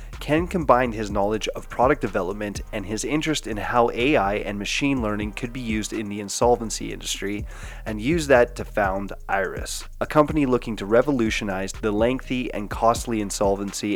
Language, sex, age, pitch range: English, male, 30-49, 100-125 Hz